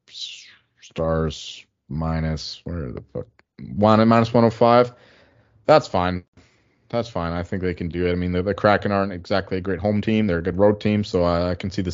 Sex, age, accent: male, 20-39, American